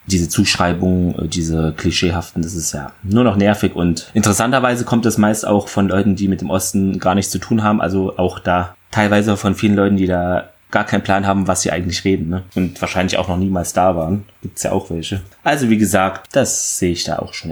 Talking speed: 225 wpm